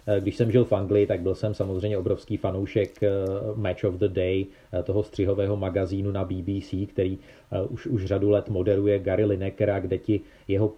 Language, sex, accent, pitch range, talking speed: Czech, male, native, 105-120 Hz, 180 wpm